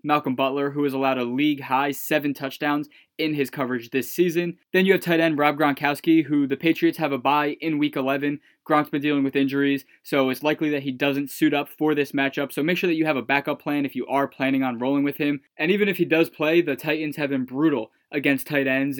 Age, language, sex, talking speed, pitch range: 20-39, English, male, 245 wpm, 140-160 Hz